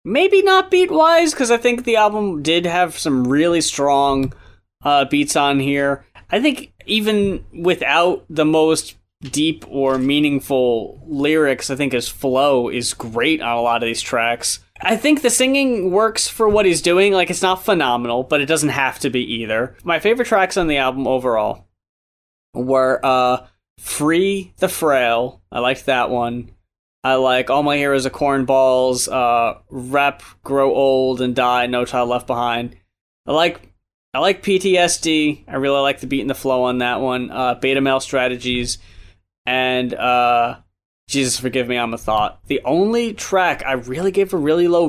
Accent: American